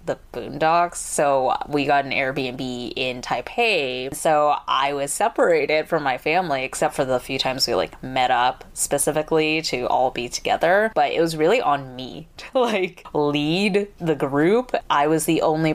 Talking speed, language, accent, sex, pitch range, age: 170 wpm, English, American, female, 140-180 Hz, 10-29